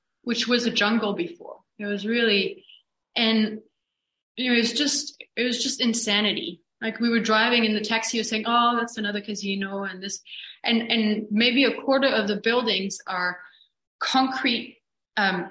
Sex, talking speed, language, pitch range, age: female, 160 wpm, English, 210-250 Hz, 30-49